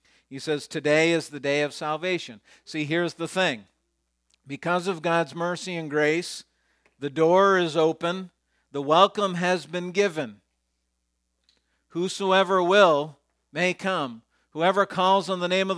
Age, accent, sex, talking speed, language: 50-69, American, male, 140 wpm, English